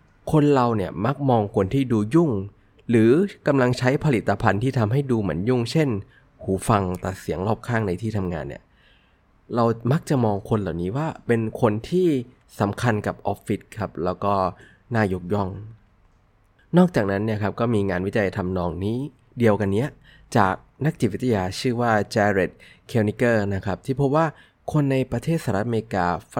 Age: 20-39